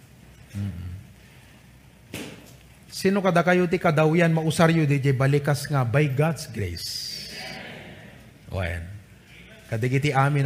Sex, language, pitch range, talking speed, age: male, English, 125-155 Hz, 100 wpm, 30-49